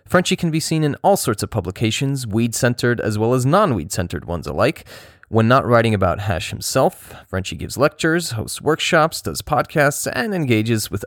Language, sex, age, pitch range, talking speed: English, male, 30-49, 95-135 Hz, 175 wpm